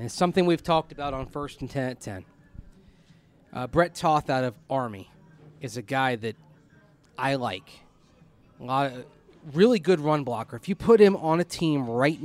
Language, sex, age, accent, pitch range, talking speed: English, male, 30-49, American, 130-165 Hz, 175 wpm